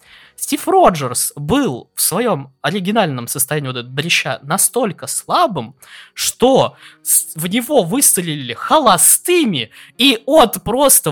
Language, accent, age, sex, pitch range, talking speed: Russian, native, 20-39, male, 165-245 Hz, 105 wpm